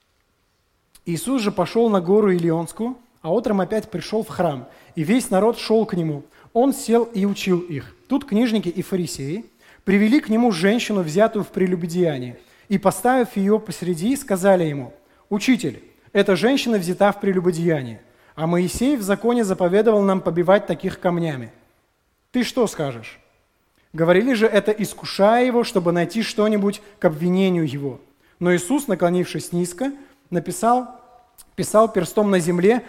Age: 20-39